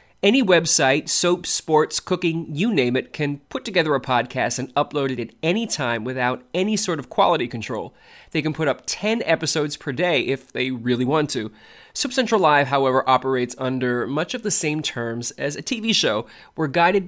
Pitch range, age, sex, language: 130-180 Hz, 20-39, male, English